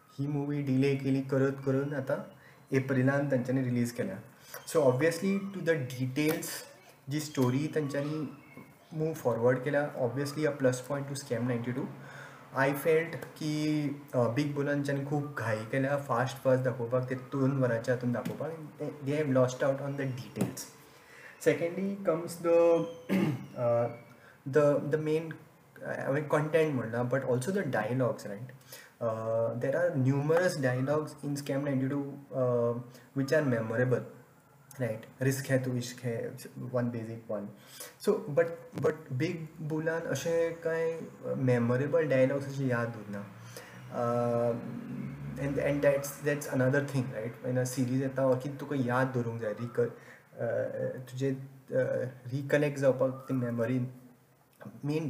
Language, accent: Marathi, native